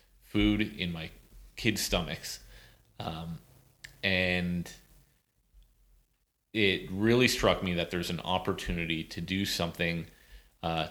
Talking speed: 105 wpm